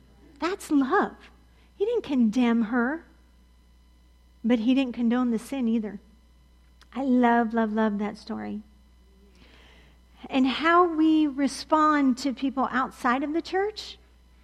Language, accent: English, American